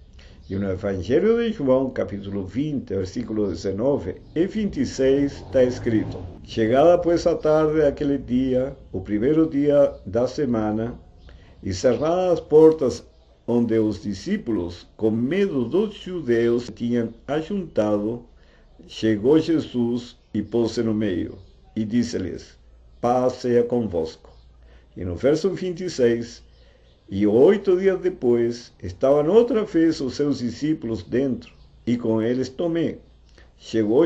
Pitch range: 100-150 Hz